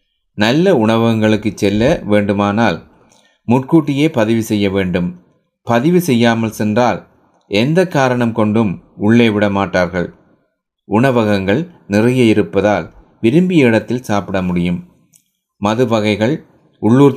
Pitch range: 105-140 Hz